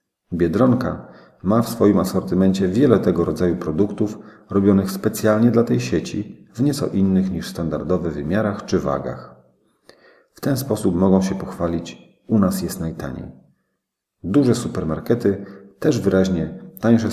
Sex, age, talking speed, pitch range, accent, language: male, 40-59, 130 wpm, 85-105 Hz, native, Polish